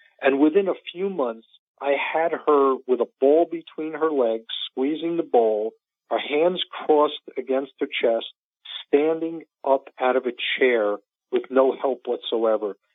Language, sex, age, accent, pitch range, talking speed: English, male, 50-69, American, 130-180 Hz, 155 wpm